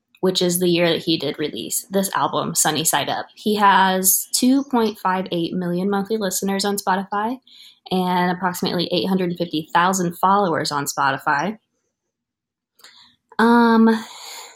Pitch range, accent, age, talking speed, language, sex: 180-215 Hz, American, 20-39, 115 wpm, English, female